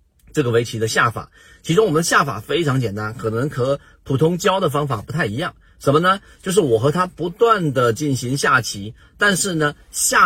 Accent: native